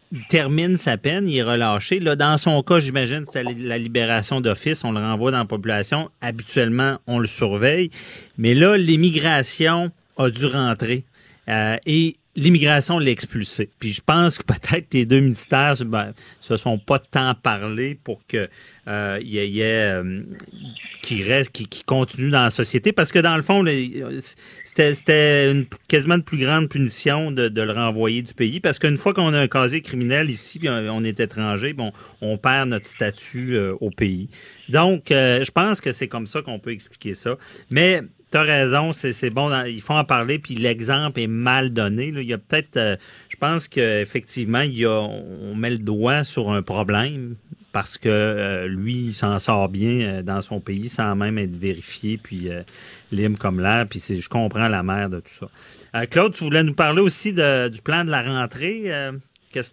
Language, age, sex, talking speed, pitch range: French, 40-59, male, 195 wpm, 110-145 Hz